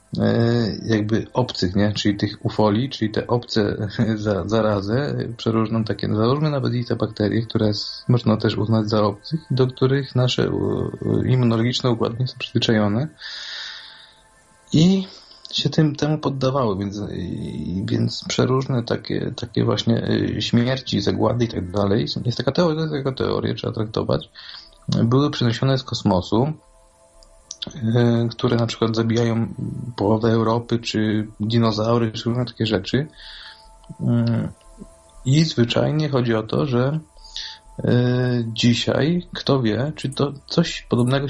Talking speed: 125 wpm